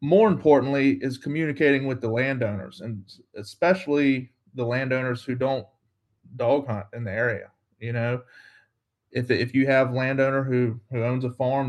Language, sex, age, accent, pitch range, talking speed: English, male, 30-49, American, 120-145 Hz, 155 wpm